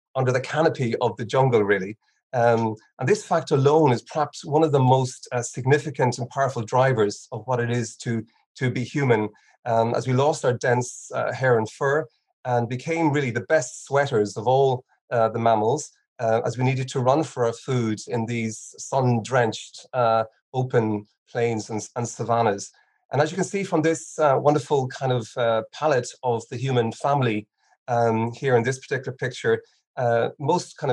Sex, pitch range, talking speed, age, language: male, 115-140 Hz, 185 wpm, 30-49, English